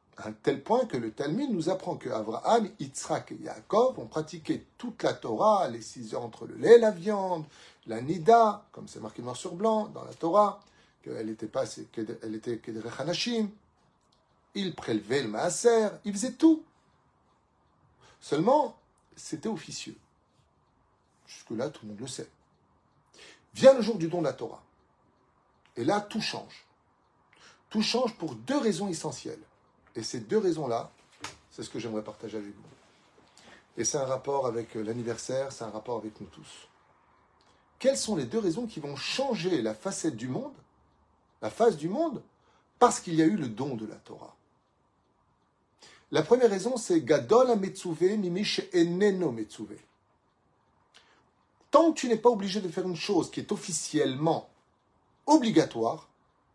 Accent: French